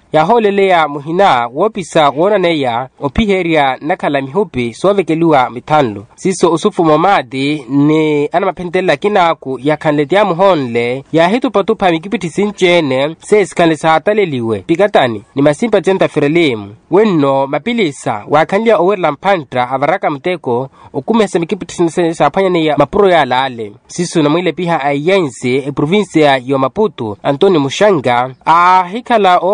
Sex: male